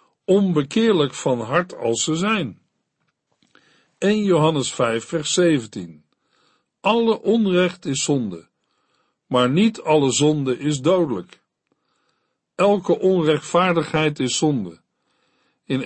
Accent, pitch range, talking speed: Dutch, 140-180 Hz, 100 wpm